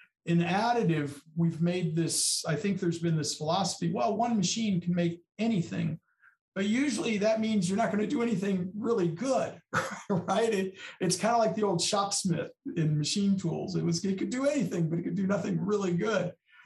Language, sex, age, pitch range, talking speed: English, male, 50-69, 150-195 Hz, 185 wpm